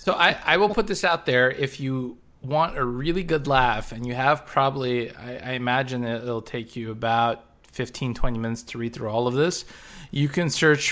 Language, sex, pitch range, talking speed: English, male, 115-145 Hz, 210 wpm